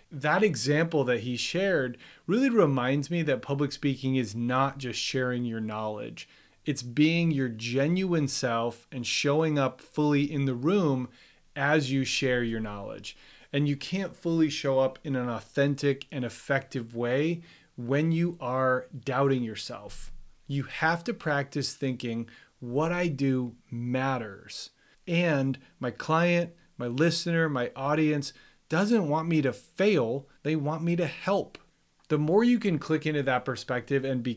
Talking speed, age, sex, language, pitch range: 150 wpm, 30-49, male, English, 125-155 Hz